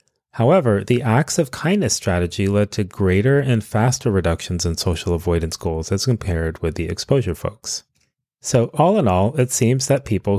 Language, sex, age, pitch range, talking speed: English, male, 30-49, 90-125 Hz, 175 wpm